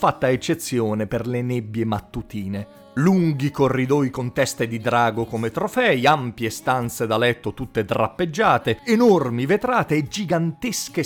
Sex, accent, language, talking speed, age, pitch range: male, native, Italian, 130 wpm, 40-59, 115-160 Hz